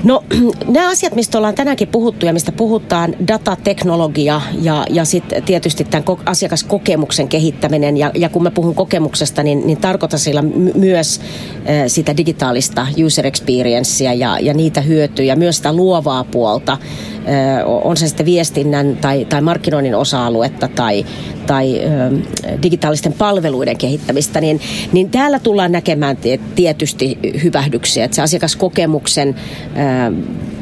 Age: 30-49